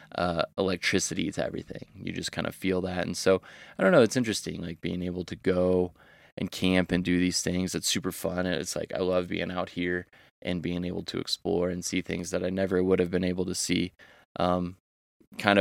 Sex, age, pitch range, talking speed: male, 20-39, 90-100 Hz, 225 wpm